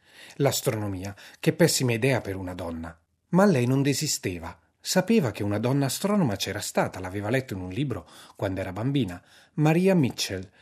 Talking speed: 160 wpm